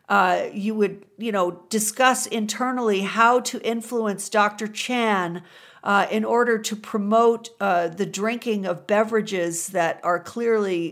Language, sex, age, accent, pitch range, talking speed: English, female, 50-69, American, 200-260 Hz, 135 wpm